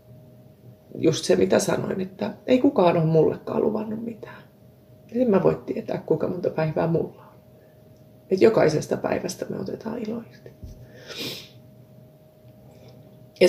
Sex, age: female, 30-49